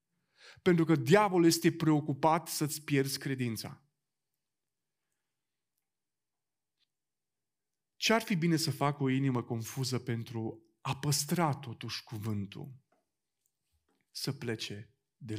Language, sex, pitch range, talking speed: Romanian, male, 115-155 Hz, 95 wpm